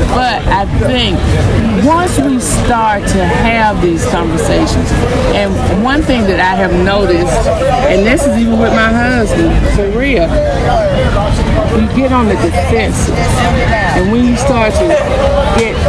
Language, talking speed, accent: English, 135 wpm, American